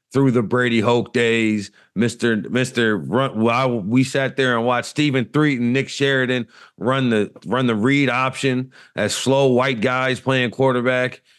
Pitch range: 105-125 Hz